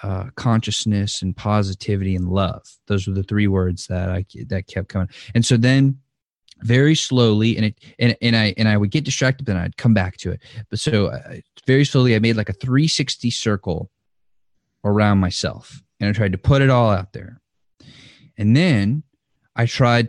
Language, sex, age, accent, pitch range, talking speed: English, male, 20-39, American, 100-130 Hz, 190 wpm